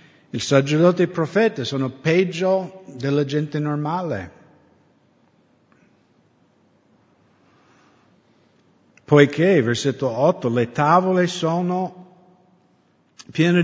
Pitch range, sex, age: 125-160 Hz, male, 50-69